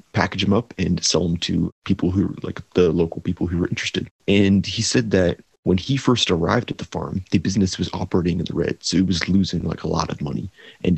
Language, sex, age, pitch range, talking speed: English, male, 30-49, 85-100 Hz, 245 wpm